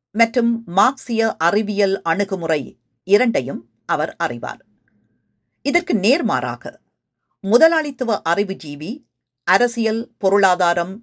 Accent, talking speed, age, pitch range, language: native, 70 wpm, 50-69, 170-245 Hz, Tamil